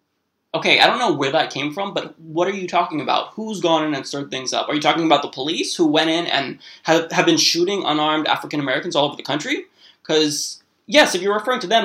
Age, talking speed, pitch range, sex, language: 20-39, 245 wpm, 155-210 Hz, male, English